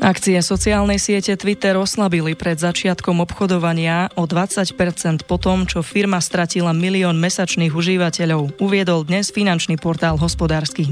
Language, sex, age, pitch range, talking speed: Slovak, female, 20-39, 165-195 Hz, 120 wpm